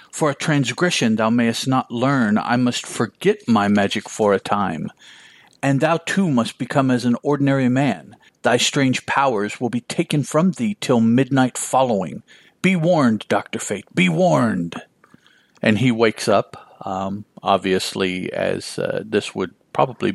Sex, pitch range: male, 110-170 Hz